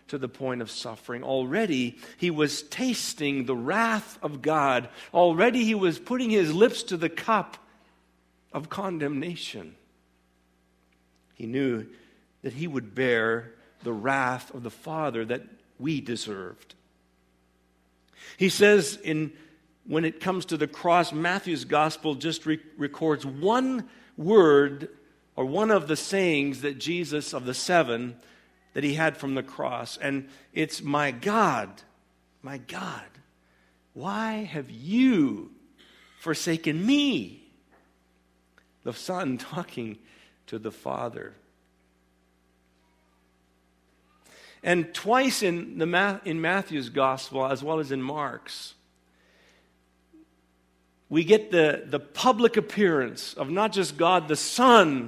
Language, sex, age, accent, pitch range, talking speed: English, male, 50-69, American, 110-175 Hz, 120 wpm